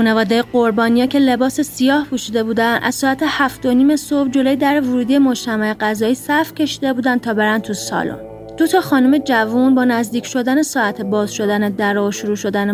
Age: 30-49